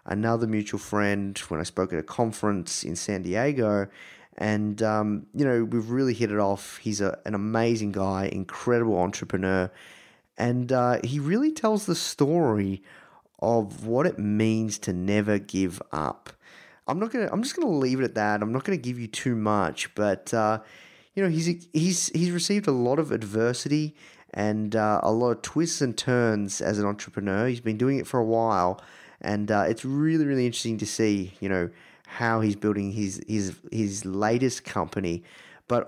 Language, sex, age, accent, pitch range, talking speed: English, male, 20-39, Australian, 100-125 Hz, 180 wpm